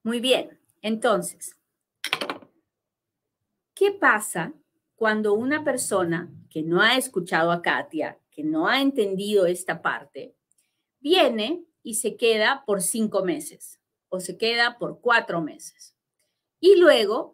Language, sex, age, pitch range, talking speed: Spanish, female, 40-59, 180-260 Hz, 120 wpm